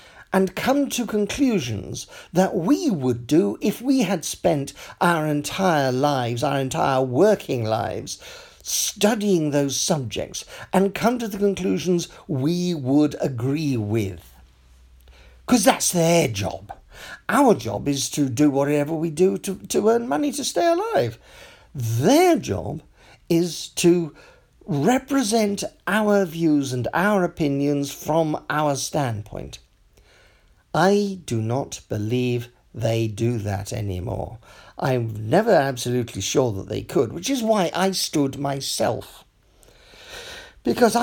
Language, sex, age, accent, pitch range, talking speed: English, male, 50-69, British, 120-195 Hz, 125 wpm